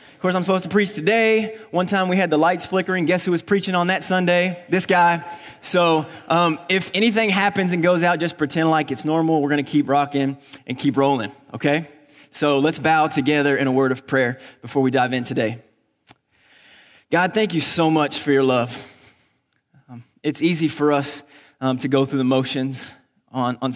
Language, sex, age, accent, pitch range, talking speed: English, male, 20-39, American, 135-170 Hz, 200 wpm